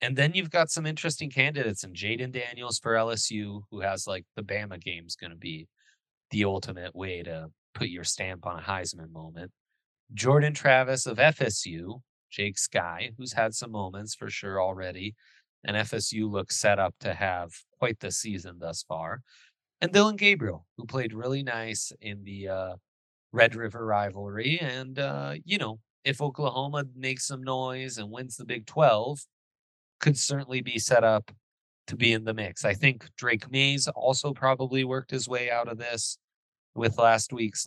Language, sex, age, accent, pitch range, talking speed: English, male, 30-49, American, 100-130 Hz, 175 wpm